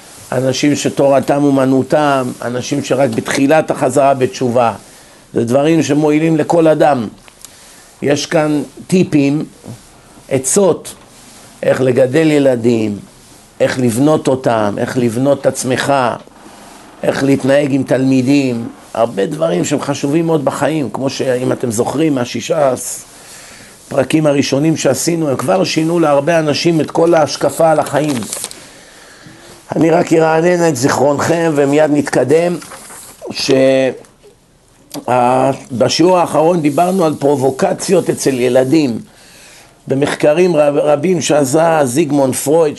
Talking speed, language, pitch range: 105 wpm, Hebrew, 135-165 Hz